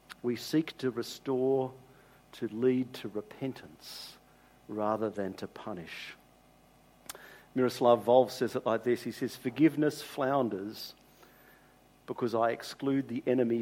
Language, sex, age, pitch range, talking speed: English, male, 50-69, 105-130 Hz, 120 wpm